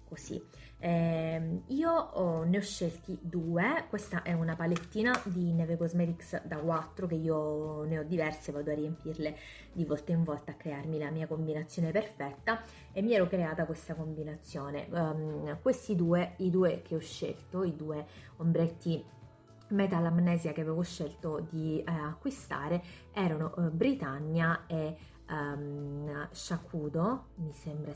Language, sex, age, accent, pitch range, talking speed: Italian, female, 20-39, native, 155-180 Hz, 140 wpm